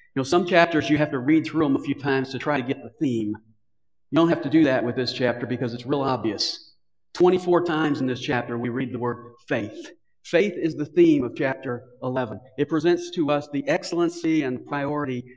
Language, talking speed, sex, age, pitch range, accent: English, 225 wpm, male, 50-69, 150-210 Hz, American